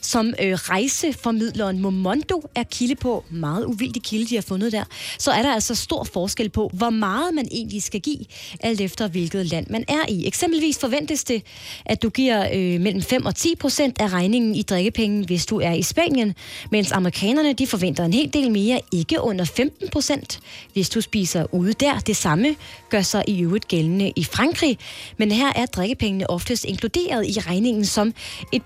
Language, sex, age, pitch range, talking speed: Danish, female, 20-39, 190-250 Hz, 190 wpm